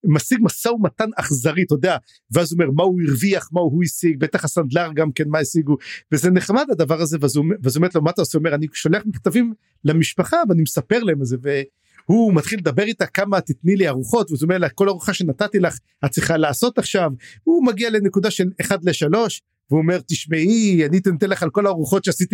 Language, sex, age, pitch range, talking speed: English, male, 50-69, 155-200 Hz, 110 wpm